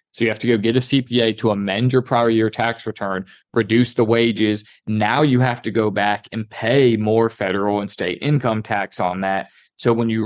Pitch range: 105-125 Hz